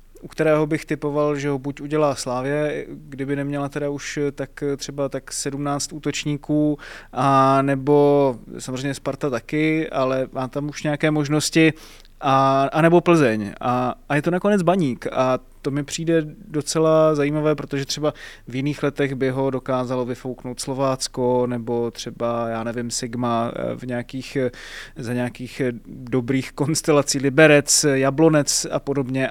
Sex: male